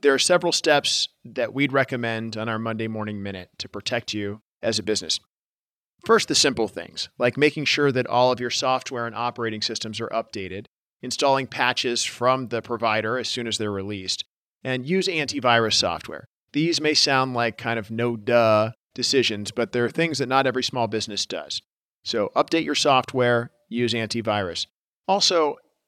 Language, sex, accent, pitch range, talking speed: English, male, American, 110-130 Hz, 175 wpm